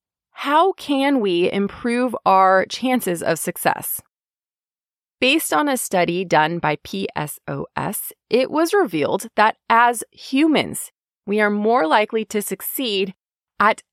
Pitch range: 190-255 Hz